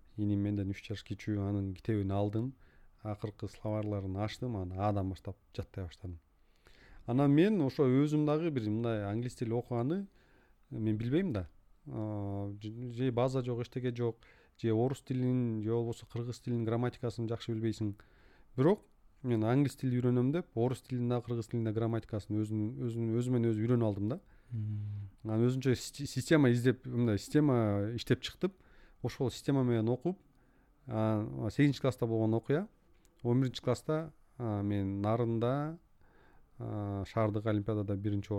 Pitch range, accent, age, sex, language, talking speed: 105-125 Hz, Turkish, 30-49, male, Russian, 55 wpm